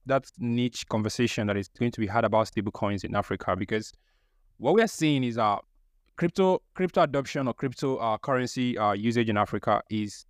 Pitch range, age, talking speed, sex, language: 110-140 Hz, 20-39, 200 wpm, male, English